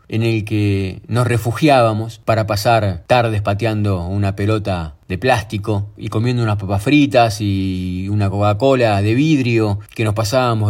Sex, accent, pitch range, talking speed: male, Argentinian, 105-135 Hz, 145 wpm